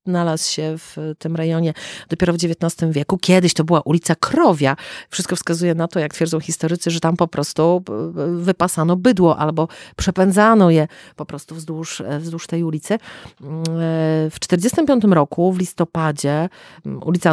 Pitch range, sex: 155-185 Hz, female